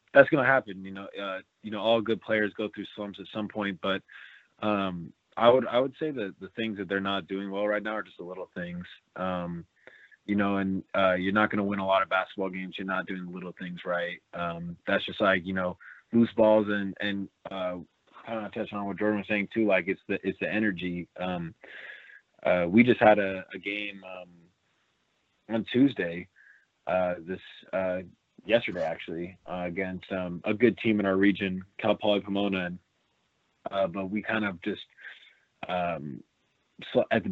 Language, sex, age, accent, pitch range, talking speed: English, male, 20-39, American, 95-105 Hz, 205 wpm